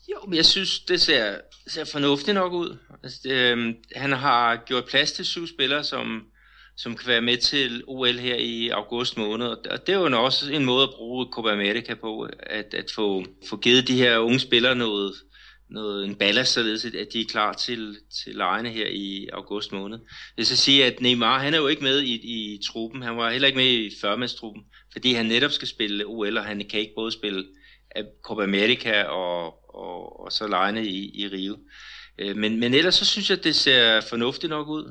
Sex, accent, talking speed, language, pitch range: male, native, 210 wpm, Danish, 105-130 Hz